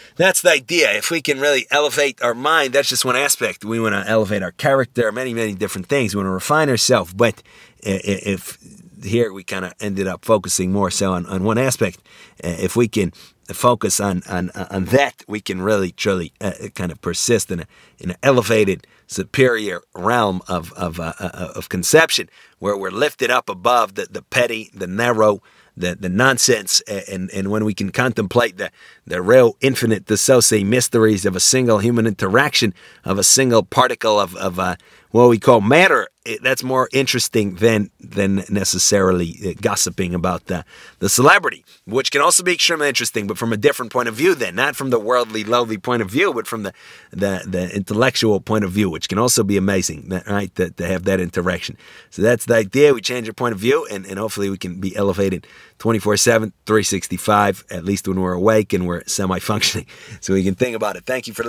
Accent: American